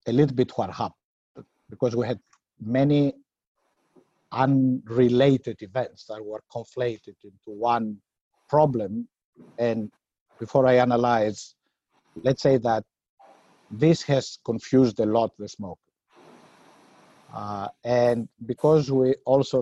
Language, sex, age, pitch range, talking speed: English, male, 50-69, 115-135 Hz, 100 wpm